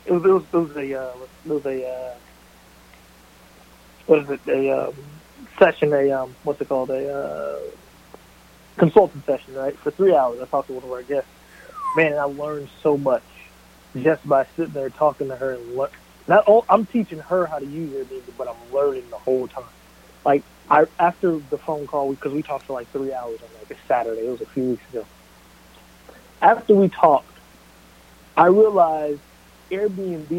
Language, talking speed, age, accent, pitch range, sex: English, 190 wpm, 30-49, American, 135-175 Hz, male